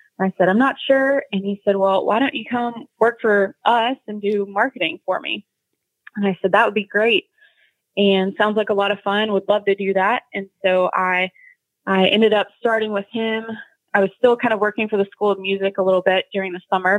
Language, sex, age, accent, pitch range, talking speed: English, female, 20-39, American, 185-210 Hz, 235 wpm